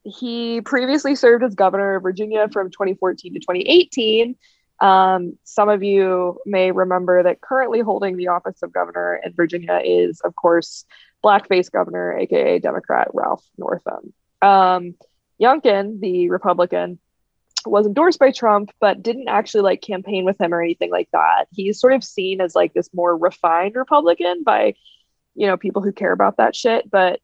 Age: 20-39